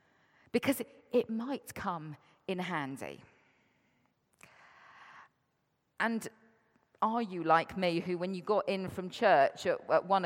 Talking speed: 130 wpm